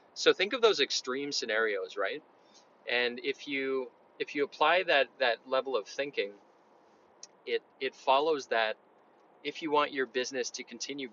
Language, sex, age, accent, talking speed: English, male, 30-49, American, 155 wpm